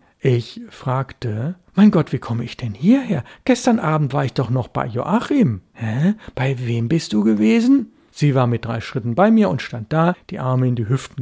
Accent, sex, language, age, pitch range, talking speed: German, male, German, 60-79, 120-175 Hz, 205 wpm